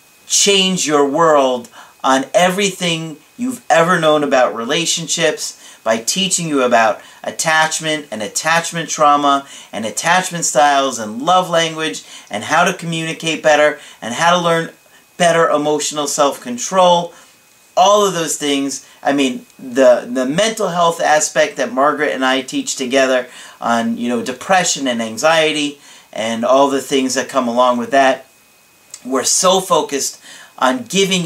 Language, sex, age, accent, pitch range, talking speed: English, male, 40-59, American, 130-175 Hz, 140 wpm